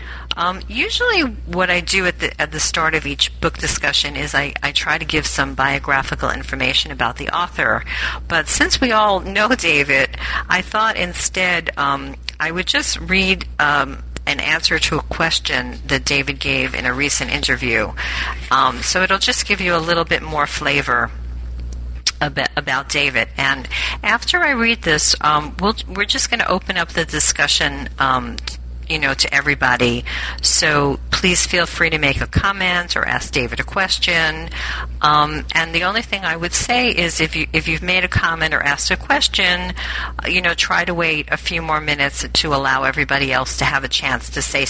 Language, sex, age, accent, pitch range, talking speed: English, female, 50-69, American, 135-175 Hz, 190 wpm